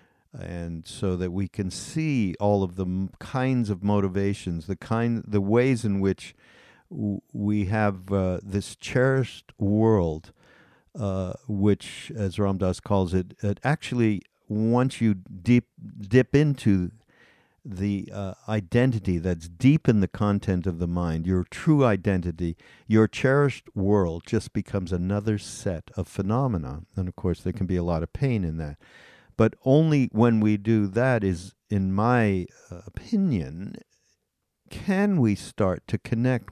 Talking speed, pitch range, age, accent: 150 wpm, 95-120 Hz, 50-69, American